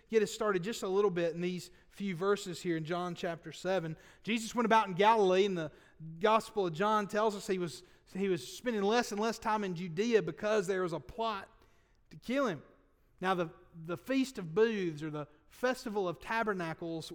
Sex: male